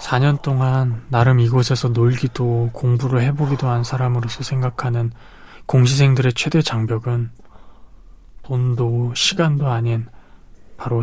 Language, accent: Korean, native